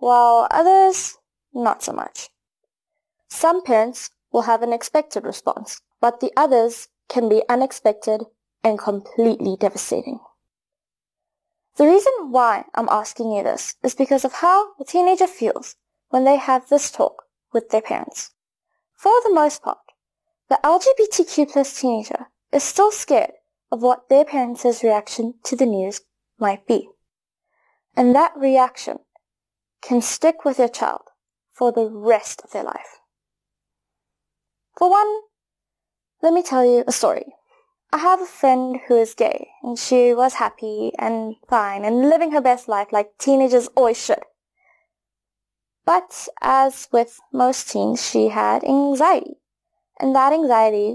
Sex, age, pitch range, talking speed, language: female, 20-39, 230-305 Hz, 140 wpm, English